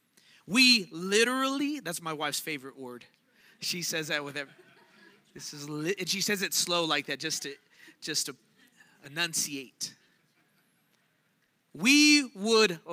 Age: 30-49